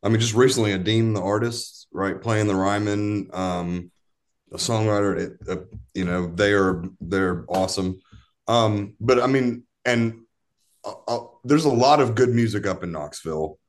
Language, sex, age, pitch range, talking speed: English, male, 30-49, 95-110 Hz, 170 wpm